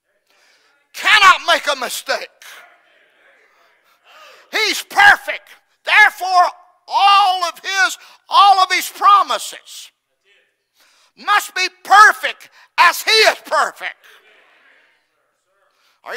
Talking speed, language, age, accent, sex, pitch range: 80 wpm, English, 50-69, American, male, 300-365 Hz